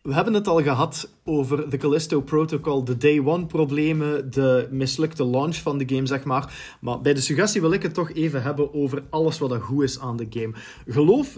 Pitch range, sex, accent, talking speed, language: 130-170 Hz, male, Dutch, 215 wpm, Dutch